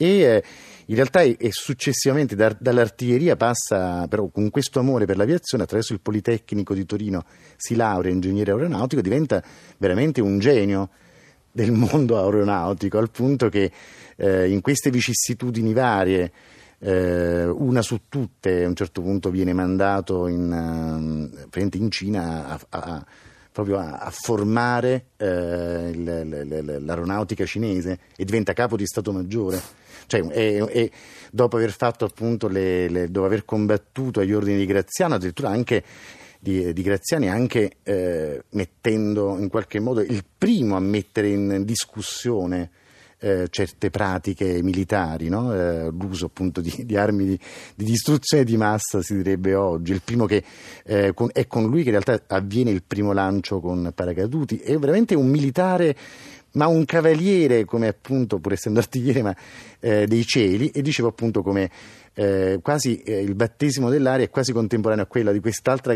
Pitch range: 95-120 Hz